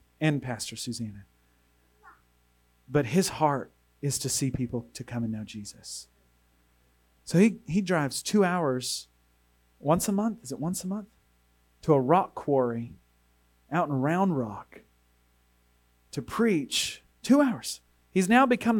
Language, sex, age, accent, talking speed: English, male, 40-59, American, 140 wpm